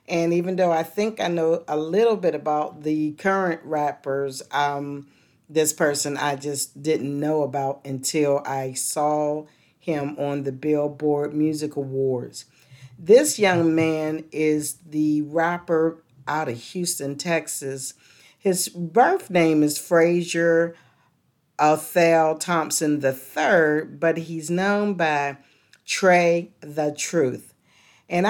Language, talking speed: English, 120 wpm